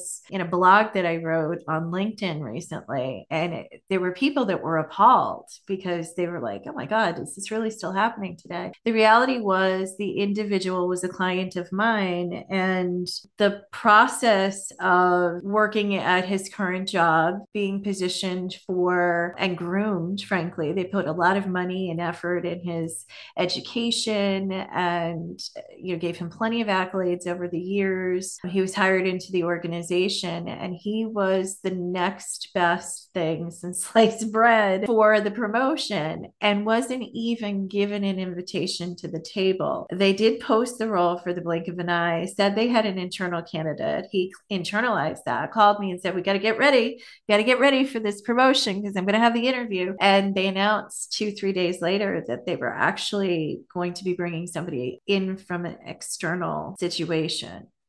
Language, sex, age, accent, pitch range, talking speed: English, female, 30-49, American, 175-205 Hz, 175 wpm